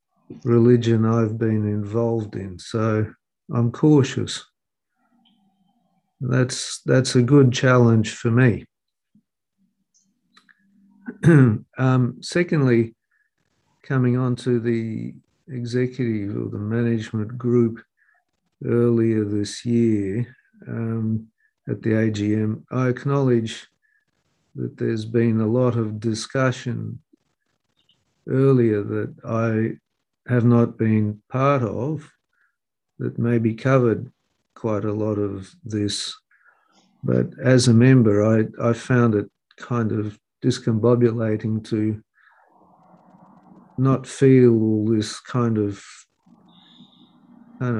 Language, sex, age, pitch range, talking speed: English, male, 50-69, 110-130 Hz, 95 wpm